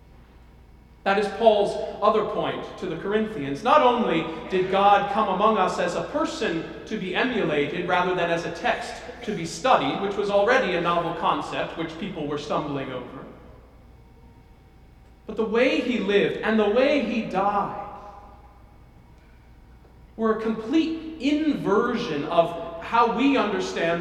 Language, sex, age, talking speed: English, male, 40-59, 145 wpm